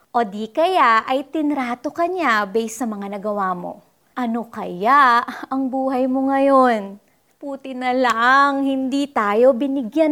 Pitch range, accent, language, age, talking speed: 210-280 Hz, native, Filipino, 20-39, 130 wpm